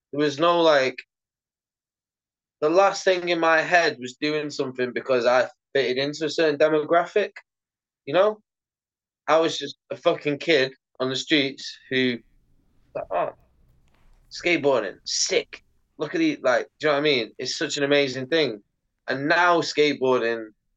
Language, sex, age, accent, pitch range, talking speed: English, male, 20-39, British, 130-165 Hz, 155 wpm